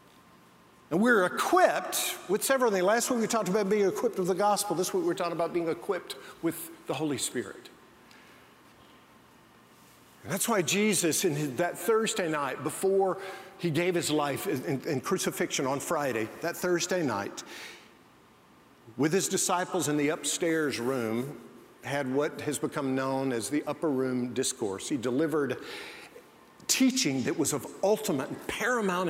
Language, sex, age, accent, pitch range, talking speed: English, male, 50-69, American, 145-190 Hz, 155 wpm